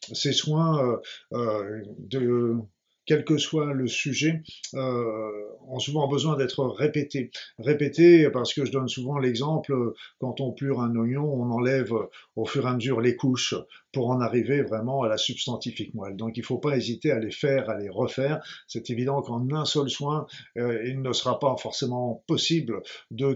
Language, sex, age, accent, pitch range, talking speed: French, male, 50-69, French, 115-140 Hz, 180 wpm